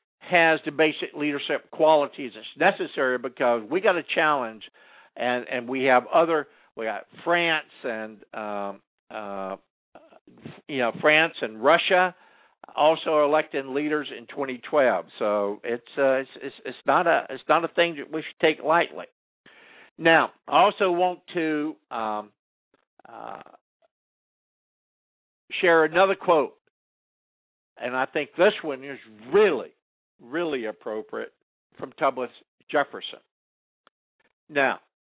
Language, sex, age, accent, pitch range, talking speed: English, male, 60-79, American, 135-195 Hz, 125 wpm